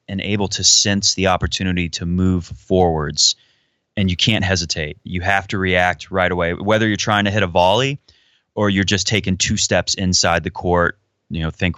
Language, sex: English, male